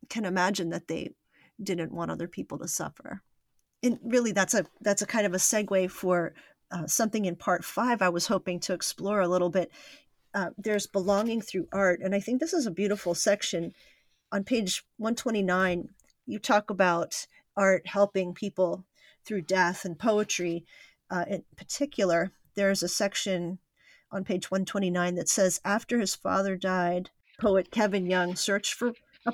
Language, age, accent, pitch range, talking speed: English, 40-59, American, 180-210 Hz, 175 wpm